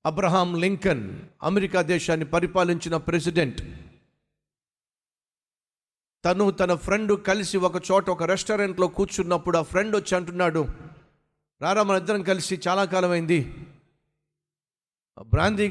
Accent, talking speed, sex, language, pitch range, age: native, 75 wpm, male, Telugu, 145-190 Hz, 50-69